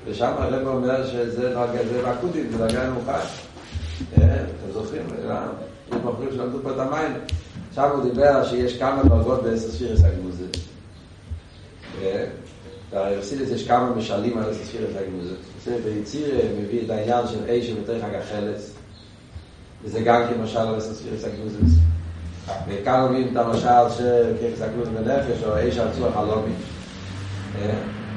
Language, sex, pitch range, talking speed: Hebrew, male, 95-120 Hz, 85 wpm